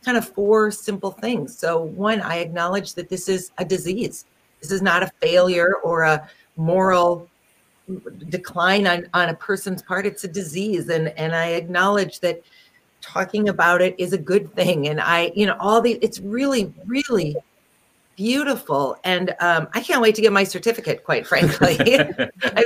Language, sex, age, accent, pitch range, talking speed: English, female, 40-59, American, 170-225 Hz, 170 wpm